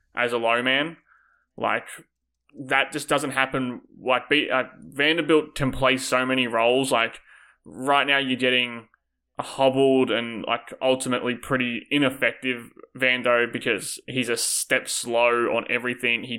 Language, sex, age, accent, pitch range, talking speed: English, male, 20-39, Australian, 120-135 Hz, 140 wpm